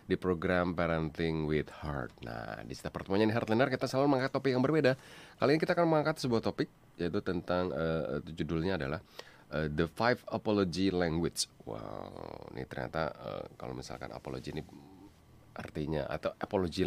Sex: male